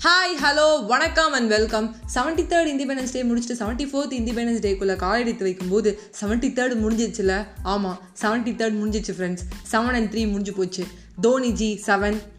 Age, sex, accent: 20-39, female, native